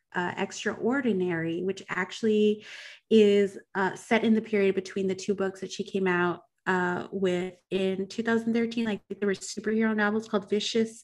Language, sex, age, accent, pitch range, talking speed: English, female, 30-49, American, 185-215 Hz, 160 wpm